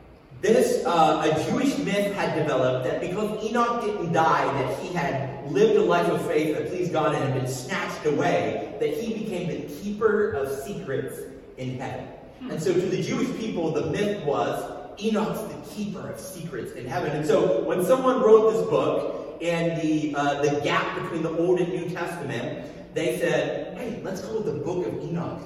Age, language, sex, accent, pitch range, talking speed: 40-59, English, male, American, 150-215 Hz, 190 wpm